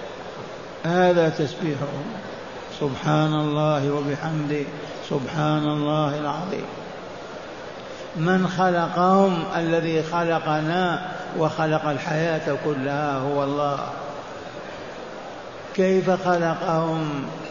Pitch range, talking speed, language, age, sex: 155-185 Hz, 65 wpm, Arabic, 60-79, male